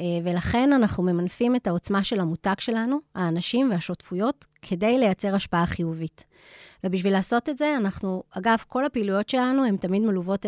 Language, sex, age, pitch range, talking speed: Hebrew, female, 30-49, 180-220 Hz, 150 wpm